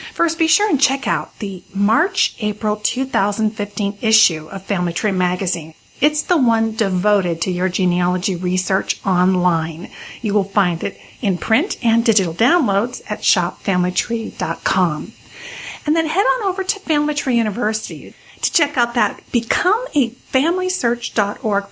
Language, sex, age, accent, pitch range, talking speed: English, female, 40-59, American, 185-250 Hz, 140 wpm